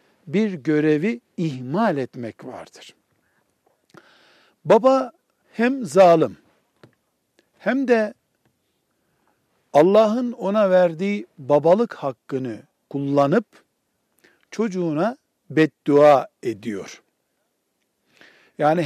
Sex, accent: male, native